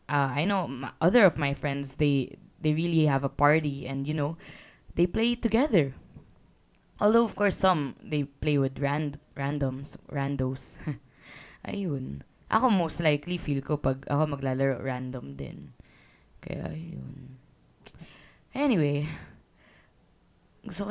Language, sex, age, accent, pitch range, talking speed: English, female, 20-39, Filipino, 140-185 Hz, 130 wpm